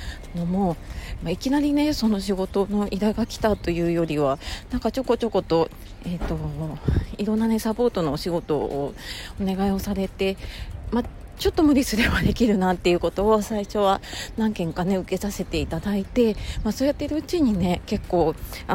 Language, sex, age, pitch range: Japanese, female, 40-59, 170-215 Hz